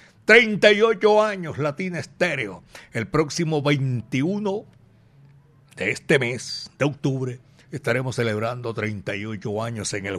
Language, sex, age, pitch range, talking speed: Spanish, male, 60-79, 120-165 Hz, 105 wpm